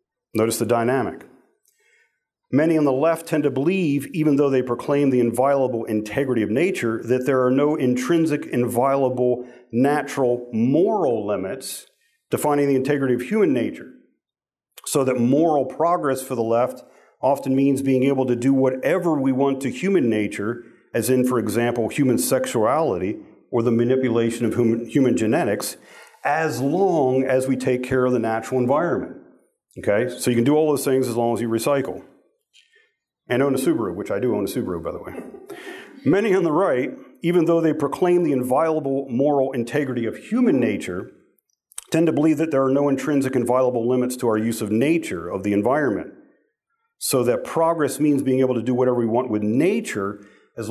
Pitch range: 120-150 Hz